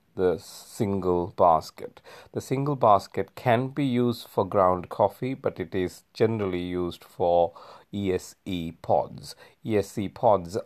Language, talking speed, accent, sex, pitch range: English, 125 wpm, Indian, male, 85-105 Hz